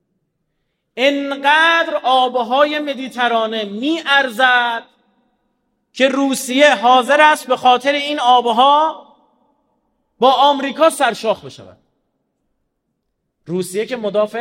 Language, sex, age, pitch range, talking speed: Persian, male, 30-49, 170-255 Hz, 85 wpm